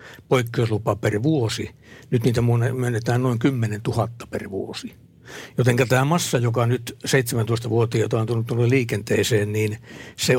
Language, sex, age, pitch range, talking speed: Finnish, male, 60-79, 110-130 Hz, 125 wpm